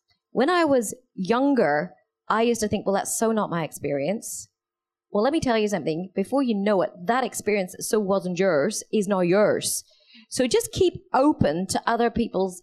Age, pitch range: 40-59, 185-235 Hz